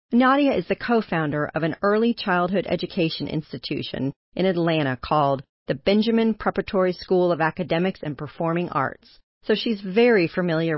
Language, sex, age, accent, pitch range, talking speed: English, female, 40-59, American, 160-210 Hz, 145 wpm